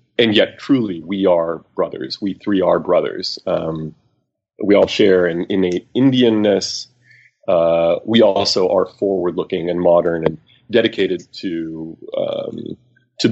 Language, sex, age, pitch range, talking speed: English, male, 30-49, 95-140 Hz, 130 wpm